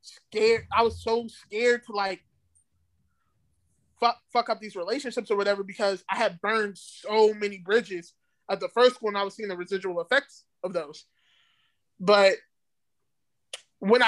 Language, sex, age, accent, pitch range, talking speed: English, male, 20-39, American, 170-215 Hz, 150 wpm